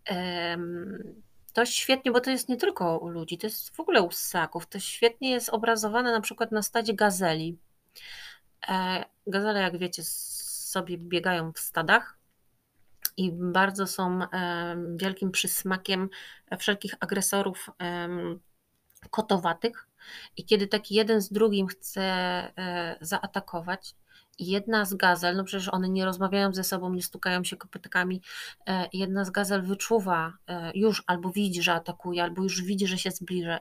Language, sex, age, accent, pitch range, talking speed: Polish, female, 30-49, native, 180-210 Hz, 135 wpm